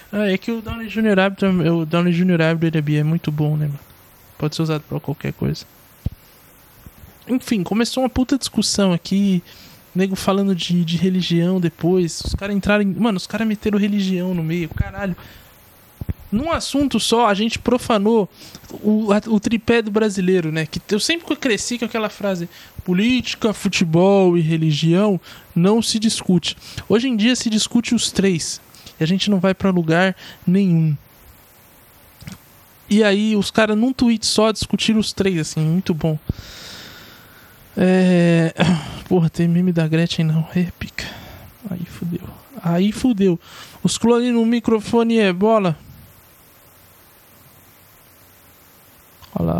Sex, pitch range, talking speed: male, 165-215 Hz, 140 wpm